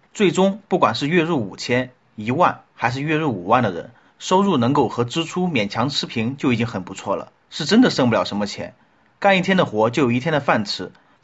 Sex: male